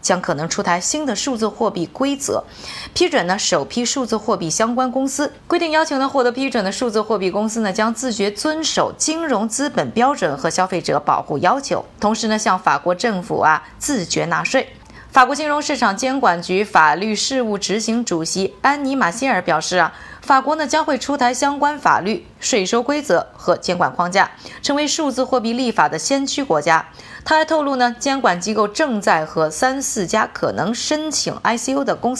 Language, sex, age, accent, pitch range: Chinese, female, 20-39, native, 190-270 Hz